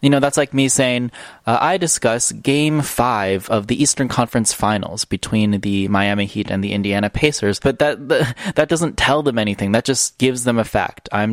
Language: English